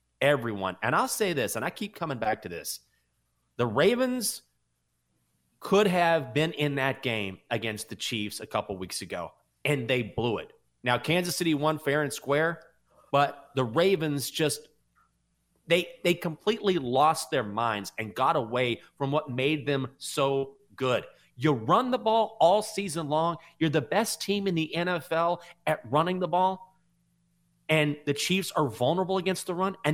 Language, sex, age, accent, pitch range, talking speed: English, male, 30-49, American, 115-180 Hz, 170 wpm